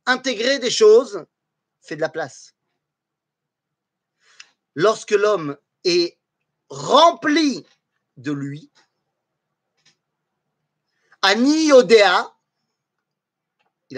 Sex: male